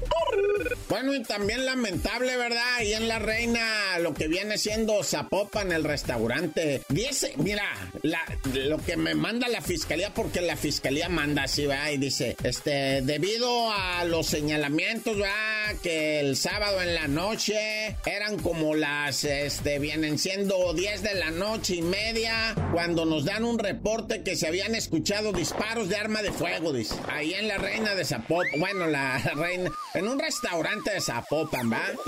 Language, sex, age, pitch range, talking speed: Spanish, male, 40-59, 155-220 Hz, 165 wpm